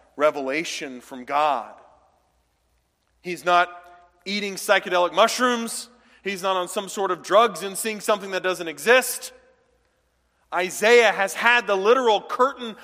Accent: American